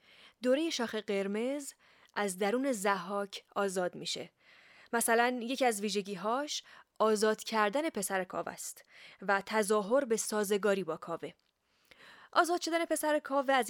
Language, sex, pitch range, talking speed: Persian, female, 200-260 Hz, 125 wpm